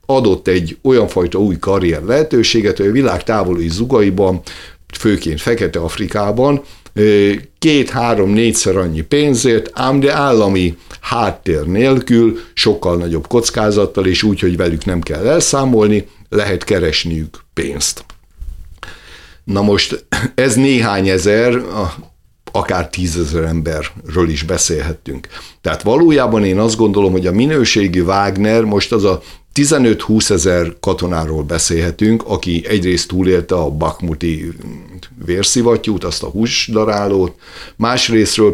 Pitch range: 85-110 Hz